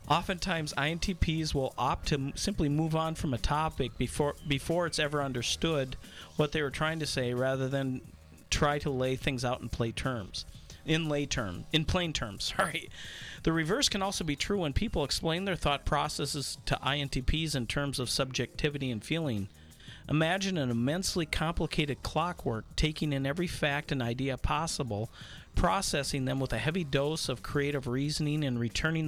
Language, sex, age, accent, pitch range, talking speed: English, male, 40-59, American, 125-155 Hz, 170 wpm